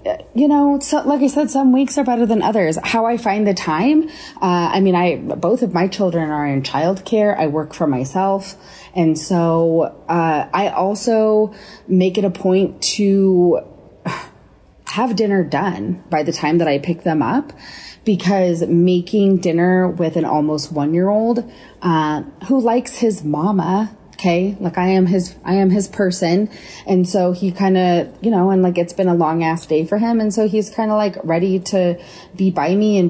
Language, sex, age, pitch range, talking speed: English, female, 30-49, 165-200 Hz, 185 wpm